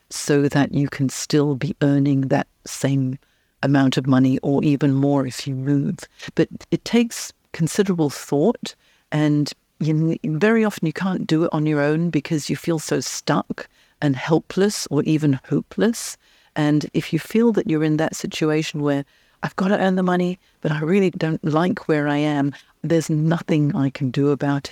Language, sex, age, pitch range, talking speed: English, female, 50-69, 140-165 Hz, 175 wpm